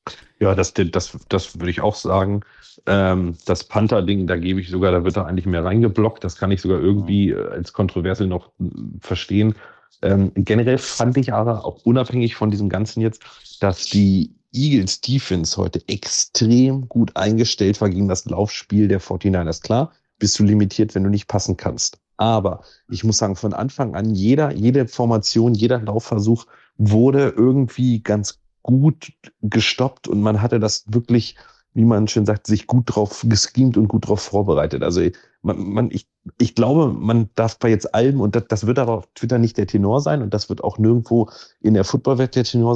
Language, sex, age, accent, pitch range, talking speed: German, male, 40-59, German, 100-120 Hz, 175 wpm